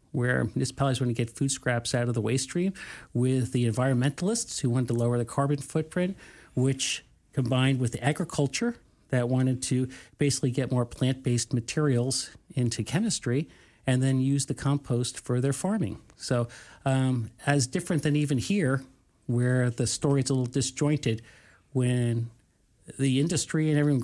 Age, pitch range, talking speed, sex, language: 40-59, 120-145 Hz, 160 wpm, male, English